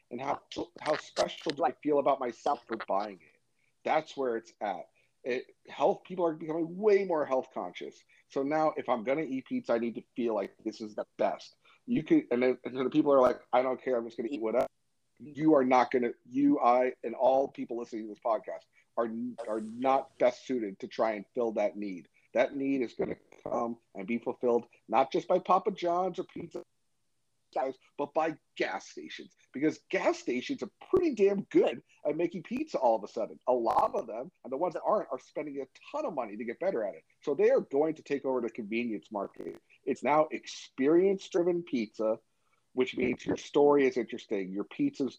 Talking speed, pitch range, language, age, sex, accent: 220 wpm, 120-175 Hz, English, 40-59, male, American